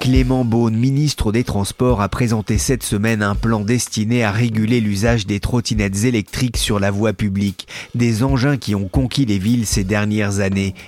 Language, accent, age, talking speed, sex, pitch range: French, French, 40-59, 175 wpm, male, 100-125 Hz